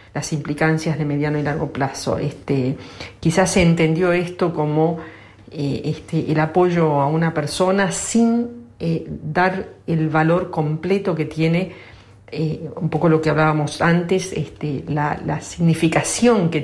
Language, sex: Spanish, female